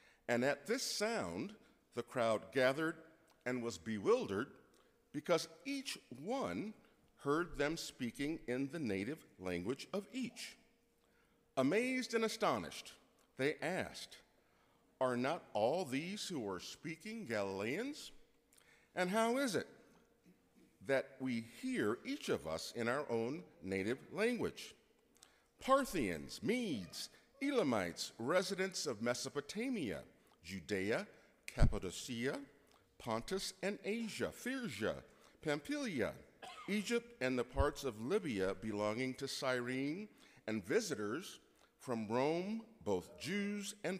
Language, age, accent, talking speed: English, 50-69, American, 110 wpm